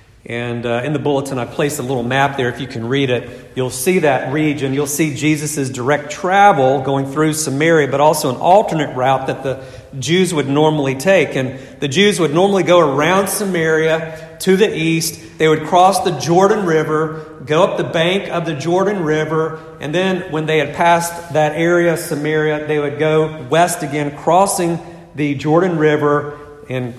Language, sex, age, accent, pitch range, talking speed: English, male, 40-59, American, 125-165 Hz, 185 wpm